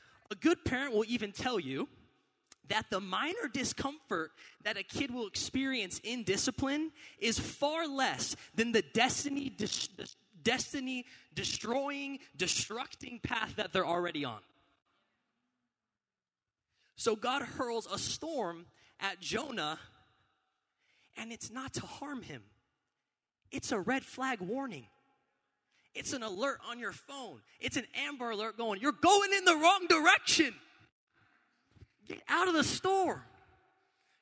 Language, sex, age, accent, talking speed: English, male, 20-39, American, 125 wpm